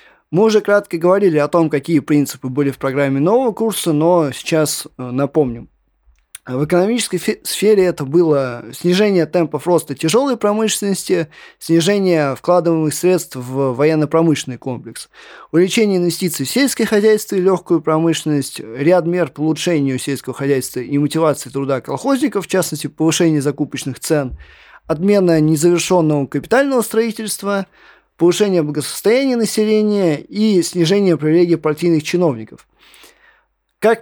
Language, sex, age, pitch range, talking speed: Russian, male, 20-39, 145-190 Hz, 120 wpm